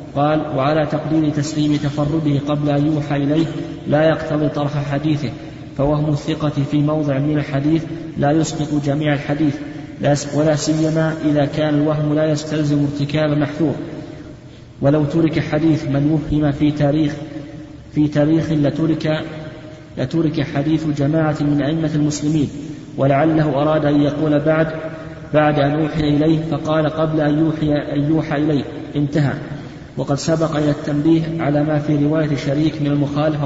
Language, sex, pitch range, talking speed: Arabic, male, 145-155 Hz, 135 wpm